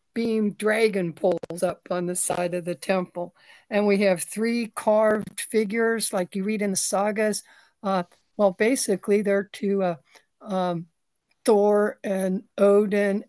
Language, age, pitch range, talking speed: English, 60-79, 190-220 Hz, 145 wpm